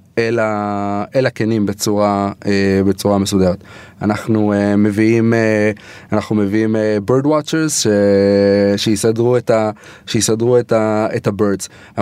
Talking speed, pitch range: 70 wpm, 105-135 Hz